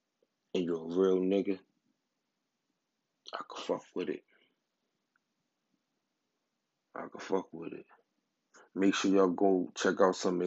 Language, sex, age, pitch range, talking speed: English, male, 20-39, 90-100 Hz, 125 wpm